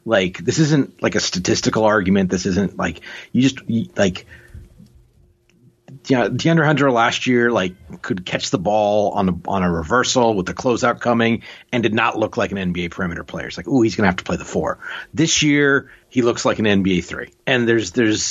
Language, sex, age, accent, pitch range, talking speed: English, male, 30-49, American, 90-120 Hz, 210 wpm